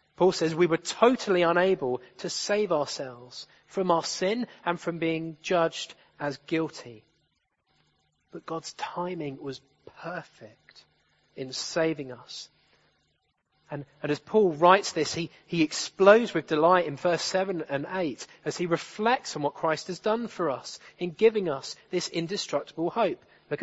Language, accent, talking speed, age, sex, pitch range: English, British, 150 wpm, 30-49, male, 145-190 Hz